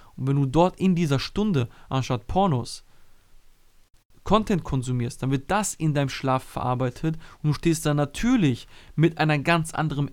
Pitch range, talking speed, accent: 130-170 Hz, 160 wpm, German